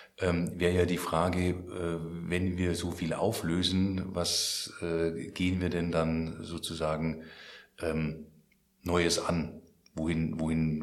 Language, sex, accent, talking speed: German, male, German, 125 wpm